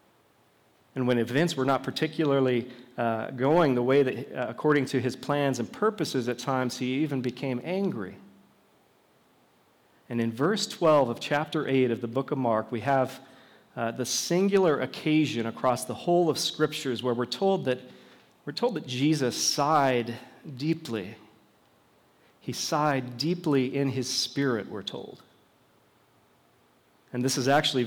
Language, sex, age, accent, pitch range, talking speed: English, male, 40-59, American, 120-145 Hz, 150 wpm